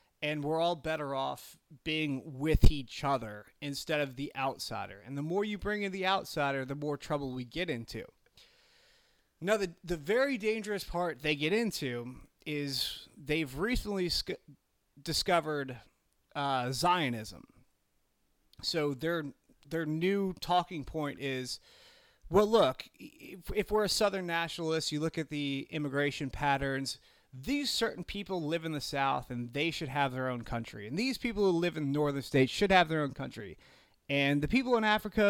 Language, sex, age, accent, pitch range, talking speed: English, male, 30-49, American, 135-180 Hz, 165 wpm